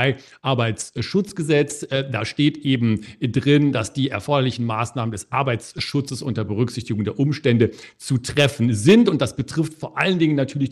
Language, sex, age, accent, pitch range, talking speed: German, male, 50-69, German, 125-155 Hz, 140 wpm